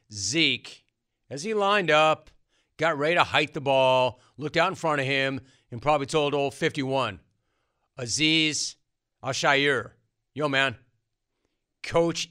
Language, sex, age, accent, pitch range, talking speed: English, male, 40-59, American, 130-185 Hz, 130 wpm